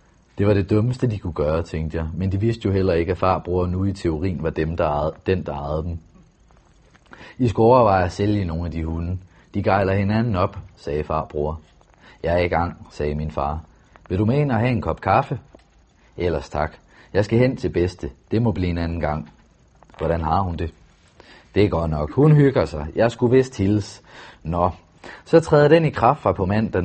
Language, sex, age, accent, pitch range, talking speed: Danish, male, 30-49, native, 80-105 Hz, 215 wpm